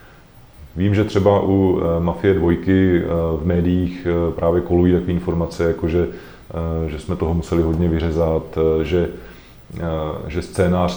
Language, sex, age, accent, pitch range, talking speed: Czech, male, 30-49, native, 80-90 Hz, 125 wpm